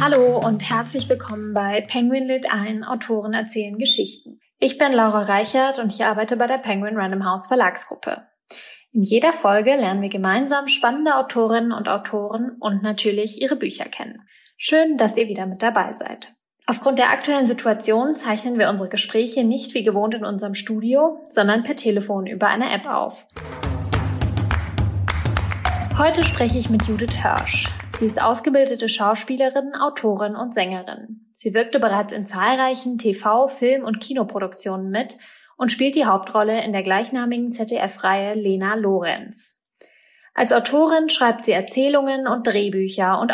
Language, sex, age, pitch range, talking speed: German, female, 20-39, 205-255 Hz, 150 wpm